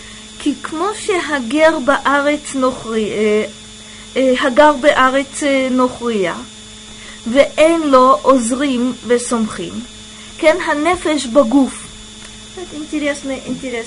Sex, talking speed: female, 55 wpm